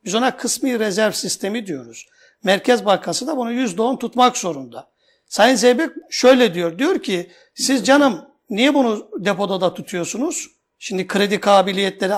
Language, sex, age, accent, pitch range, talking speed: Turkish, male, 60-79, native, 200-265 Hz, 150 wpm